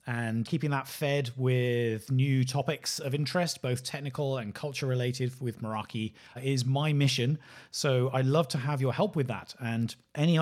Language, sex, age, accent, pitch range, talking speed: English, male, 30-49, British, 120-145 Hz, 165 wpm